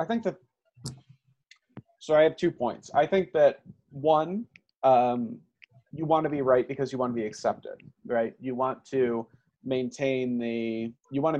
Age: 30-49